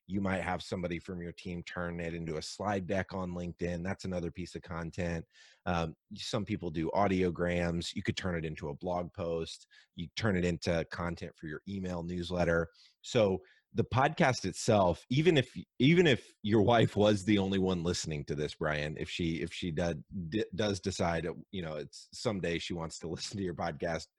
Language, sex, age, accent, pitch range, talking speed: English, male, 30-49, American, 85-100 Hz, 195 wpm